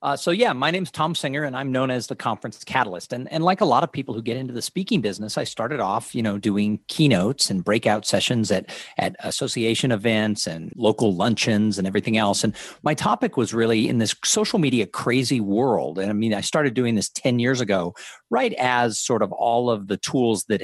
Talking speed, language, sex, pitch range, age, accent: 225 wpm, English, male, 105-145 Hz, 50-69, American